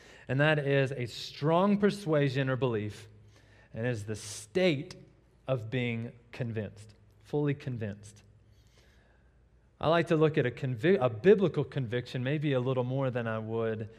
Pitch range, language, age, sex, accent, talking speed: 110-145 Hz, English, 30-49, male, American, 140 wpm